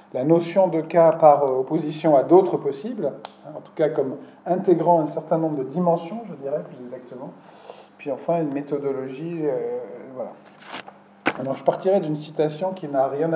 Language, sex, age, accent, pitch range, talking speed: French, male, 40-59, French, 130-170 Hz, 165 wpm